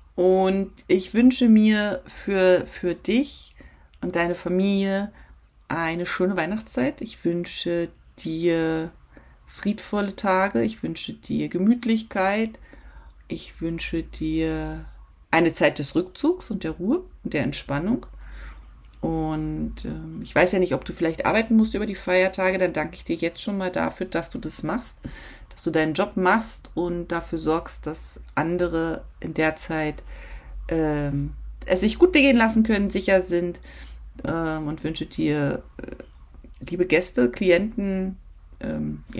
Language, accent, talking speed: German, German, 140 wpm